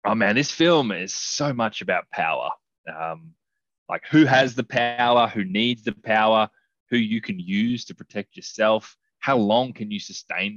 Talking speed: 175 wpm